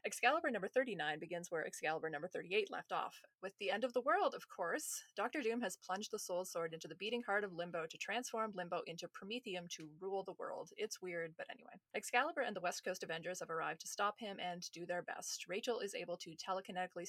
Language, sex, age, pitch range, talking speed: English, female, 20-39, 170-225 Hz, 225 wpm